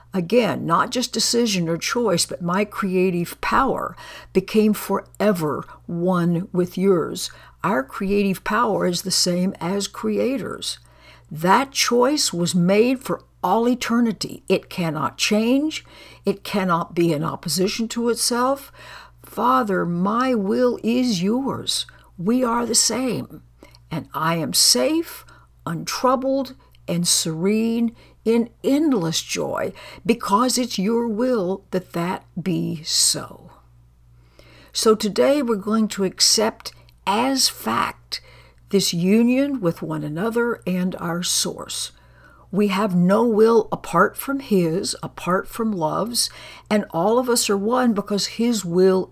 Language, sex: English, female